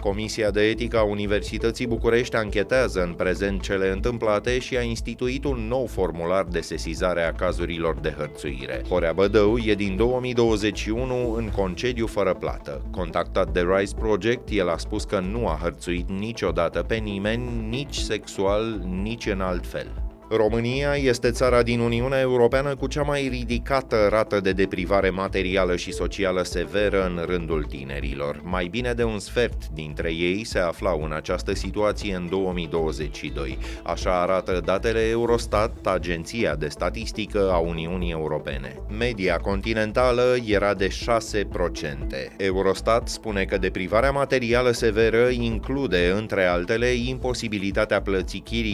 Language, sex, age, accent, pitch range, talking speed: Romanian, male, 30-49, native, 90-120 Hz, 140 wpm